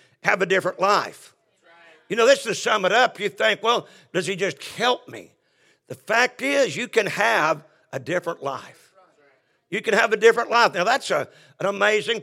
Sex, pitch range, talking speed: male, 170-230 Hz, 195 wpm